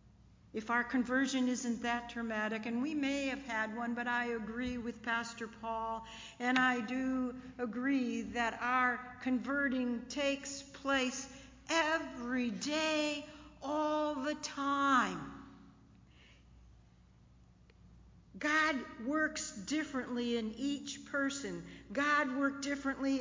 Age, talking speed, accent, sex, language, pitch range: 60-79, 105 wpm, American, female, English, 215-280 Hz